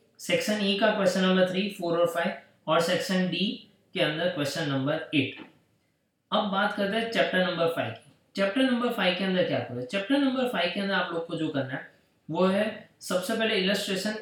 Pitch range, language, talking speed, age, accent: 155-200 Hz, Hindi, 210 wpm, 20-39, native